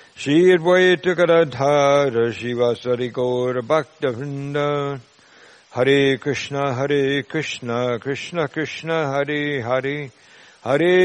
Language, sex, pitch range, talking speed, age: English, male, 125-145 Hz, 85 wpm, 60-79